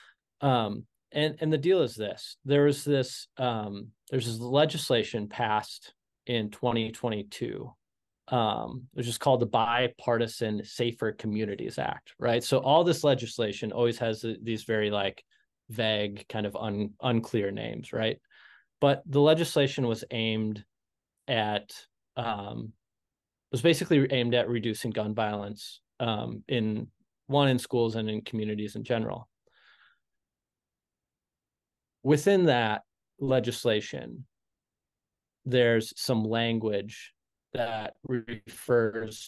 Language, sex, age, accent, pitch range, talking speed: English, male, 20-39, American, 110-125 Hz, 115 wpm